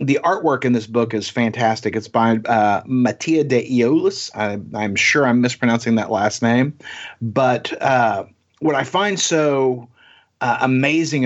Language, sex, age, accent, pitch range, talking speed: English, male, 40-59, American, 115-145 Hz, 150 wpm